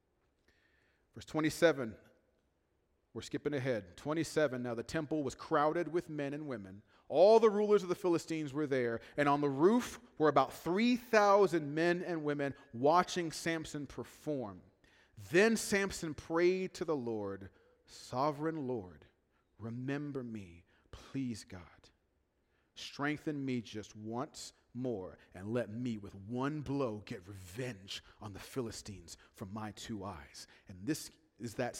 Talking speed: 135 wpm